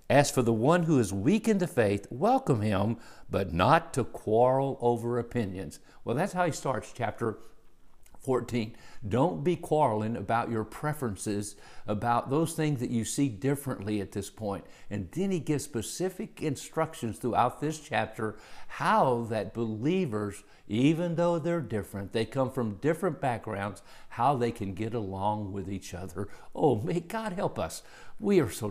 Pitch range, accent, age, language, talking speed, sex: 100-140 Hz, American, 50-69, English, 165 wpm, male